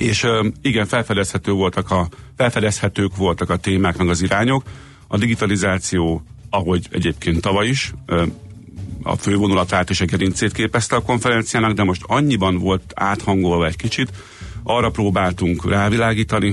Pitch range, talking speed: 90-110 Hz, 130 wpm